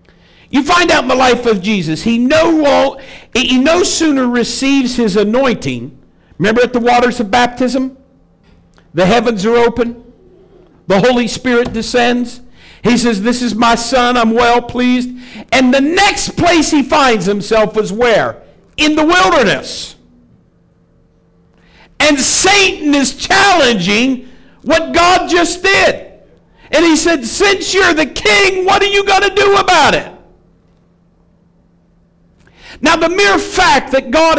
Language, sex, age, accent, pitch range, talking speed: English, male, 50-69, American, 240-335 Hz, 140 wpm